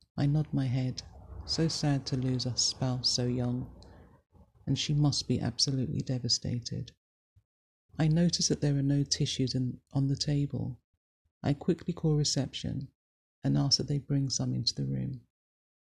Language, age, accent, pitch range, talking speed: English, 40-59, British, 95-145 Hz, 155 wpm